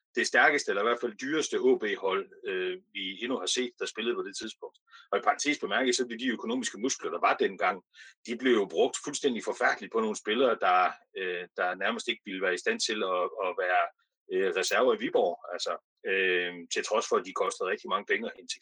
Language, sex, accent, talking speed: Danish, male, native, 225 wpm